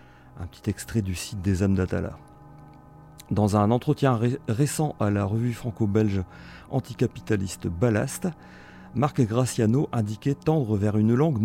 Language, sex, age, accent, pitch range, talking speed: French, male, 40-59, French, 95-120 Hz, 130 wpm